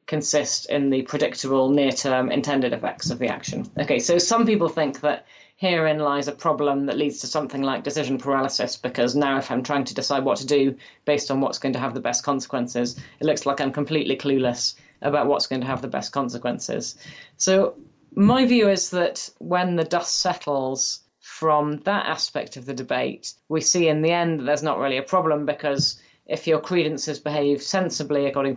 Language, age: English, 30-49